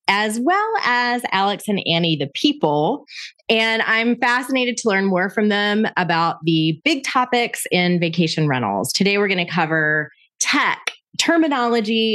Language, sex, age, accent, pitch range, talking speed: English, female, 30-49, American, 175-245 Hz, 150 wpm